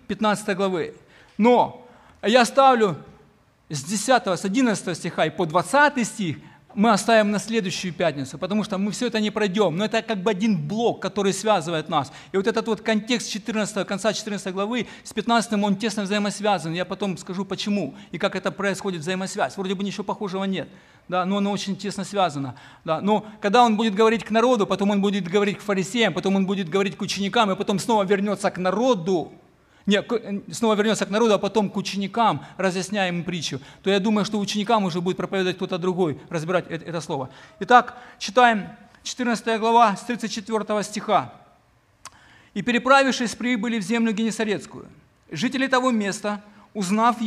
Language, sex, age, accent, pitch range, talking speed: Ukrainian, male, 40-59, native, 190-225 Hz, 170 wpm